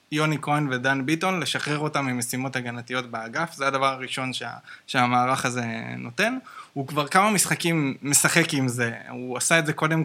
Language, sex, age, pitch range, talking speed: Hebrew, male, 20-39, 130-175 Hz, 165 wpm